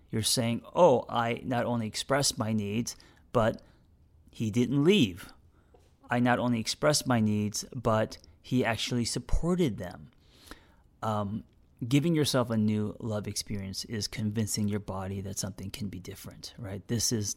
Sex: male